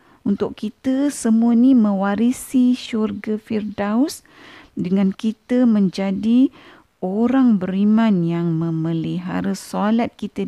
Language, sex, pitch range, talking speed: Malay, female, 155-205 Hz, 90 wpm